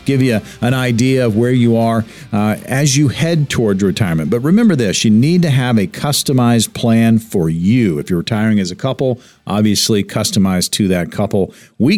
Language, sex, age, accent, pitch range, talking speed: English, male, 50-69, American, 110-140 Hz, 190 wpm